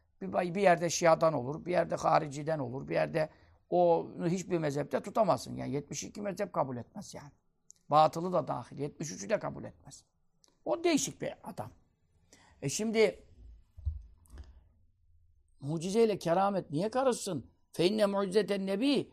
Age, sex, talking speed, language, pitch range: 60-79, male, 125 wpm, Turkish, 145-210 Hz